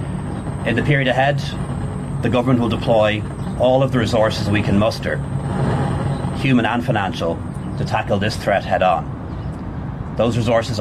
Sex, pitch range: male, 100-125 Hz